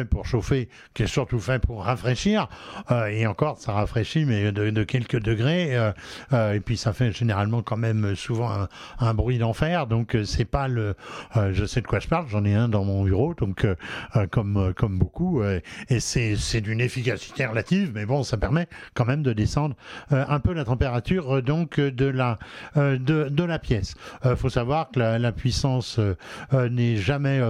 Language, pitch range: French, 115-150 Hz